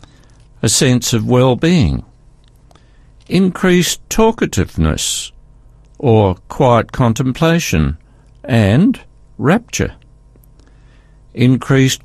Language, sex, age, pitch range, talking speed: English, male, 60-79, 115-140 Hz, 60 wpm